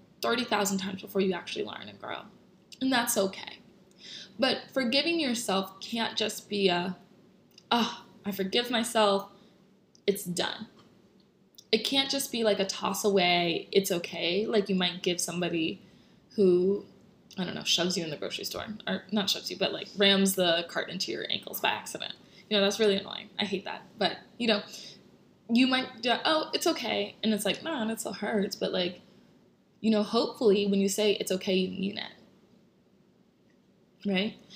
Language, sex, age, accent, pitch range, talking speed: English, female, 20-39, American, 190-220 Hz, 175 wpm